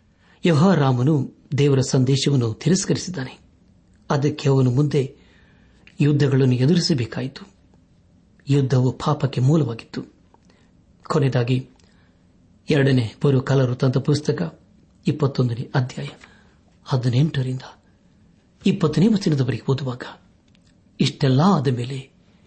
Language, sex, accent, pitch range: Kannada, male, native, 130-160 Hz